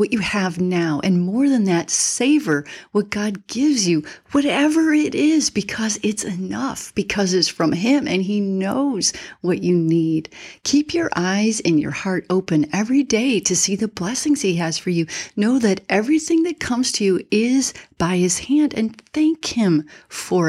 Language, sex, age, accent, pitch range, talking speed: English, female, 40-59, American, 170-245 Hz, 180 wpm